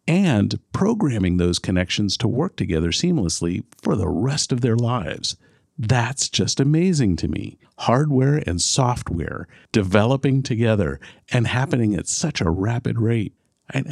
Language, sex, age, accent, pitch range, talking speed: English, male, 50-69, American, 90-125 Hz, 140 wpm